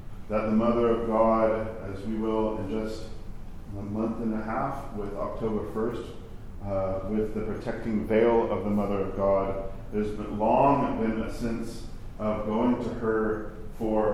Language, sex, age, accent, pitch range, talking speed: English, male, 40-59, American, 100-115 Hz, 165 wpm